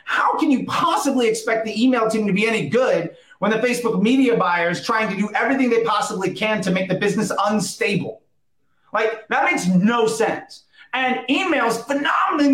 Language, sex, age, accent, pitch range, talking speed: English, male, 30-49, American, 185-235 Hz, 180 wpm